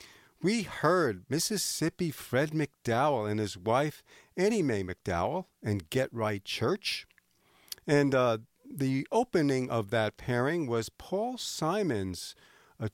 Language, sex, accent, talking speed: English, male, American, 120 wpm